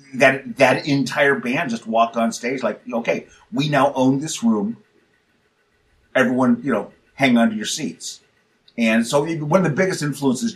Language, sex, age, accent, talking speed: English, male, 30-49, American, 175 wpm